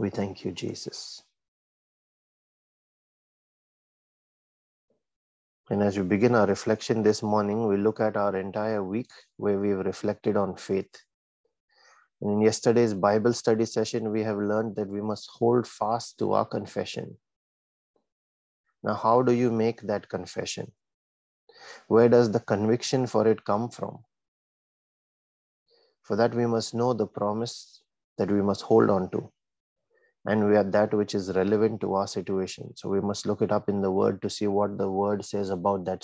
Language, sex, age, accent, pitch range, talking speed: English, male, 30-49, Indian, 100-115 Hz, 160 wpm